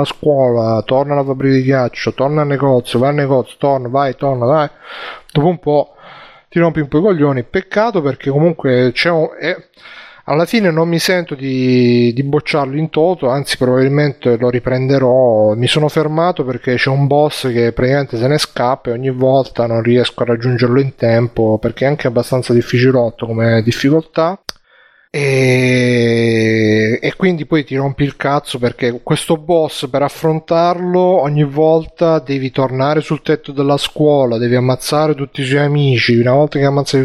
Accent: native